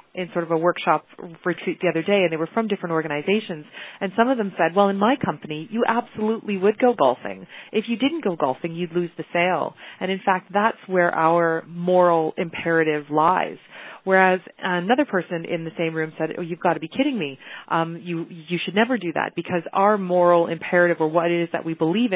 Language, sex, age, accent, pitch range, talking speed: English, female, 30-49, American, 165-195 Hz, 215 wpm